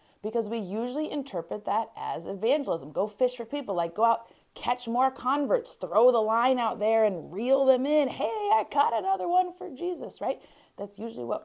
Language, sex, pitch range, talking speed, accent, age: English, female, 170-245 Hz, 195 wpm, American, 30-49